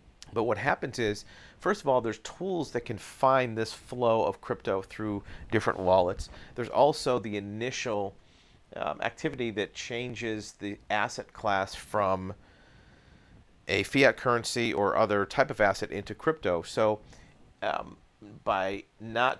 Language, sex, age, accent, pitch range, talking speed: English, male, 40-59, American, 100-120 Hz, 140 wpm